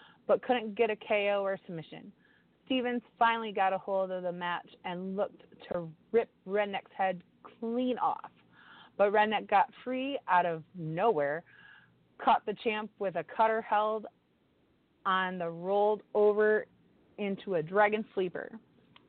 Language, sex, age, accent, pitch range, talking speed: English, female, 30-49, American, 180-225 Hz, 140 wpm